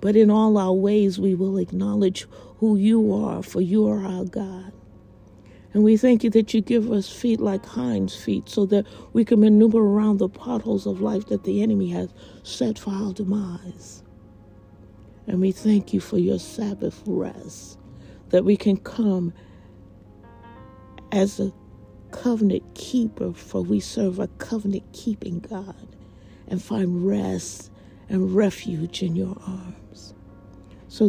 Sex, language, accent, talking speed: female, English, American, 150 wpm